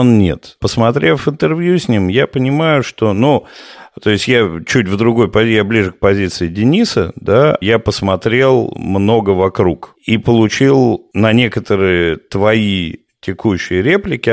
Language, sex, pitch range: Russian, male, 100-130 Hz